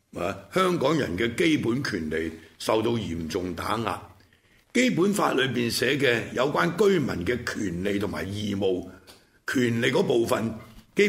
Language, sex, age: Chinese, male, 70-89